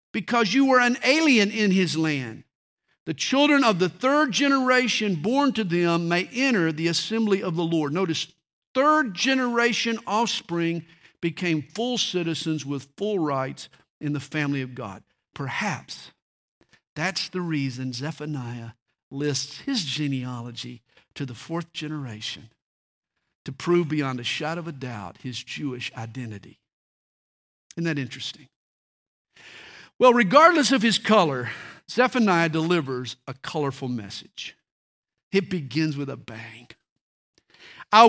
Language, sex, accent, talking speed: English, male, American, 130 wpm